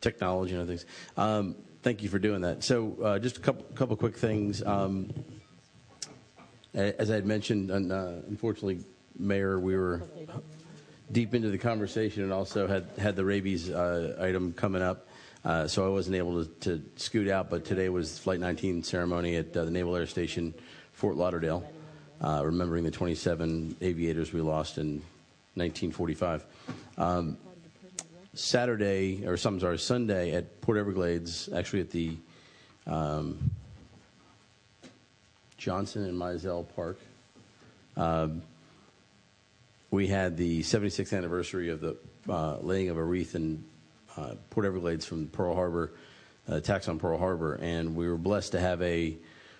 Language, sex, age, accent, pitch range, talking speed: English, male, 40-59, American, 85-105 Hz, 150 wpm